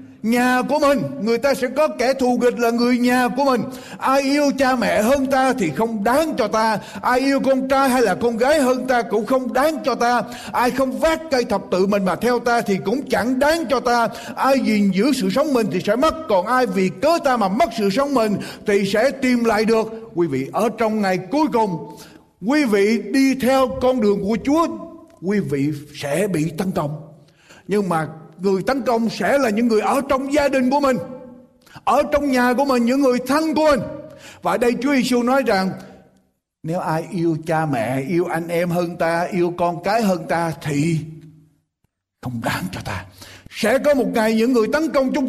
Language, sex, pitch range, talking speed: Vietnamese, male, 190-260 Hz, 215 wpm